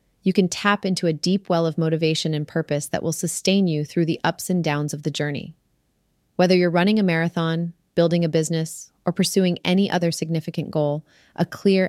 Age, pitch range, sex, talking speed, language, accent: 30-49, 155-190 Hz, female, 195 wpm, English, American